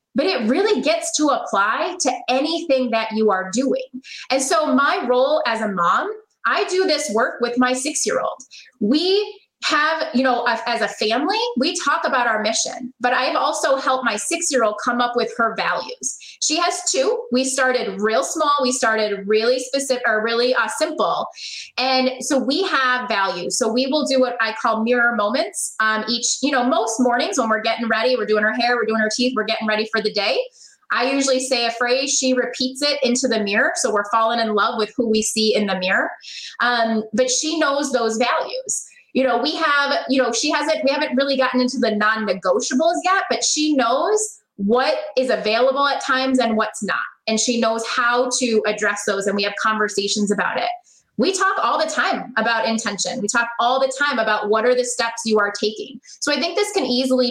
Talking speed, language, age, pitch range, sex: 210 wpm, English, 20-39, 225-280 Hz, female